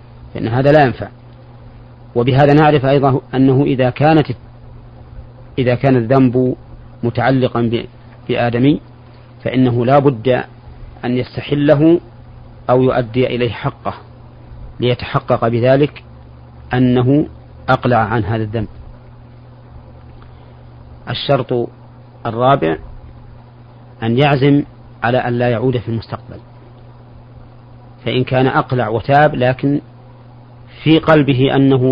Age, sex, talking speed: 40-59, male, 90 wpm